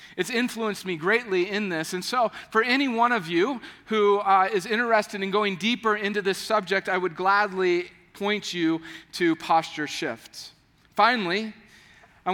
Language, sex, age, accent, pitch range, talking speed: English, male, 40-59, American, 165-200 Hz, 160 wpm